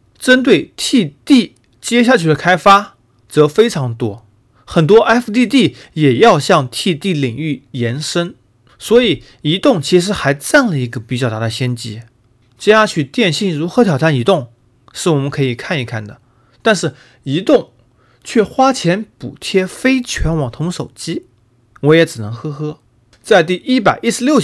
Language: Chinese